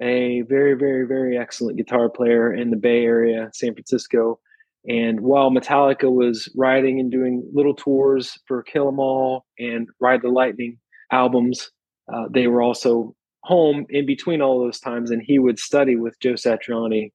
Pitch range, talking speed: 120-140 Hz, 170 wpm